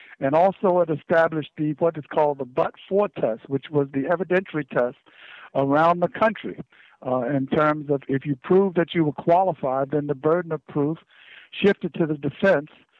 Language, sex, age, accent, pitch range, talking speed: English, male, 60-79, American, 150-175 Hz, 180 wpm